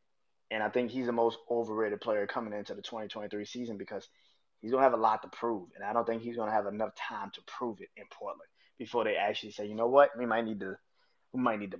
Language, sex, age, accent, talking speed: English, male, 30-49, American, 255 wpm